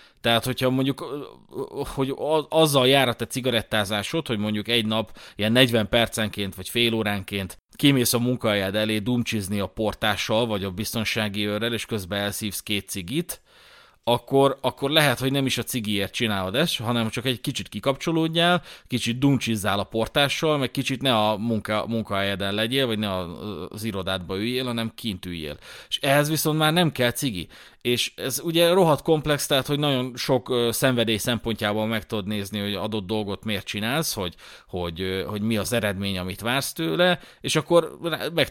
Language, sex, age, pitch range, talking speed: Hungarian, male, 30-49, 105-135 Hz, 165 wpm